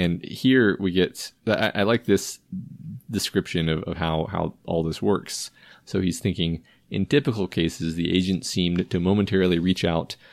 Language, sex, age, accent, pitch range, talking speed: English, male, 30-49, American, 80-95 Hz, 165 wpm